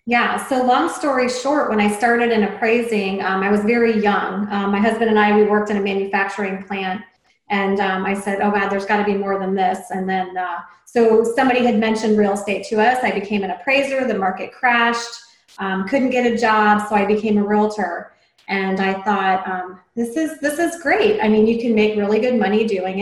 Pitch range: 200-235 Hz